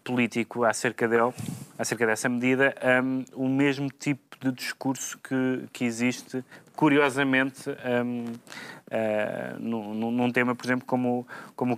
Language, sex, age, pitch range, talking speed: Portuguese, male, 20-39, 115-135 Hz, 110 wpm